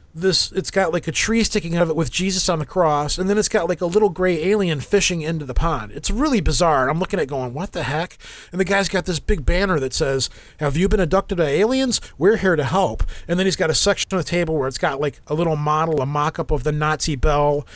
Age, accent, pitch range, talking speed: 30-49, American, 145-185 Hz, 270 wpm